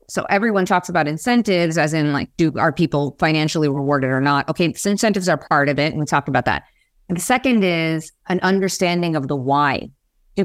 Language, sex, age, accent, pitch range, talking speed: English, female, 30-49, American, 145-180 Hz, 210 wpm